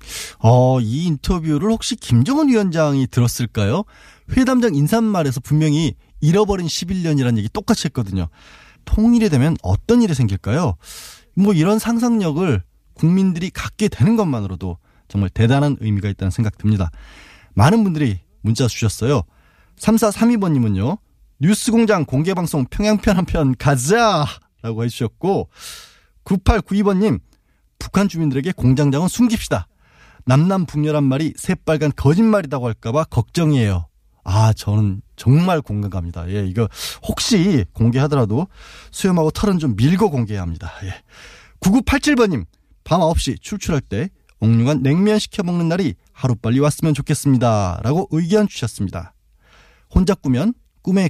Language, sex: Korean, male